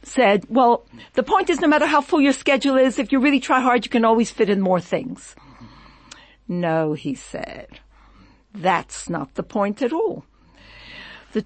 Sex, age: female, 60-79